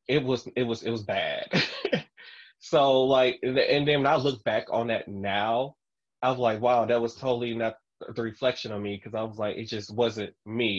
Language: English